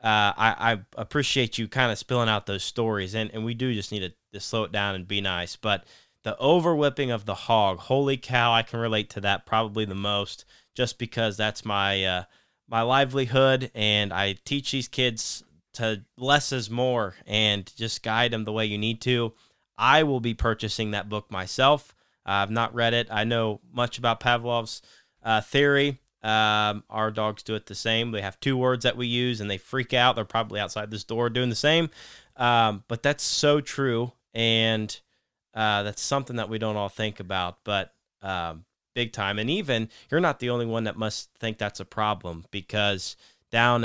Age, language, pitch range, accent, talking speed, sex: 20-39, English, 100-120 Hz, American, 200 wpm, male